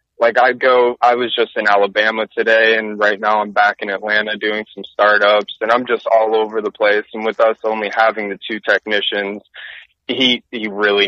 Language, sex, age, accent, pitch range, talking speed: English, male, 20-39, American, 105-120 Hz, 200 wpm